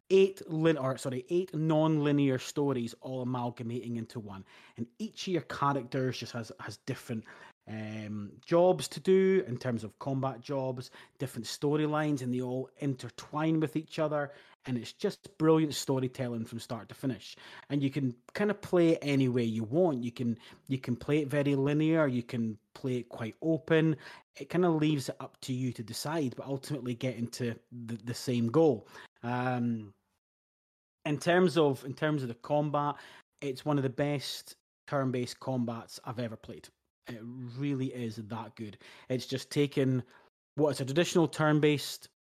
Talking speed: 170 wpm